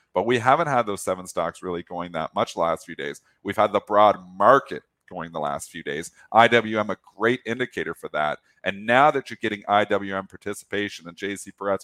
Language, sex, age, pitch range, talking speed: English, male, 40-59, 95-125 Hz, 210 wpm